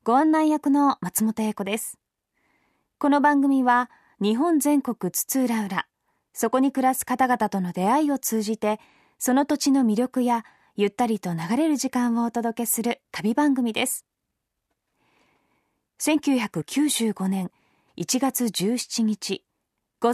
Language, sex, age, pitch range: Japanese, female, 20-39, 195-260 Hz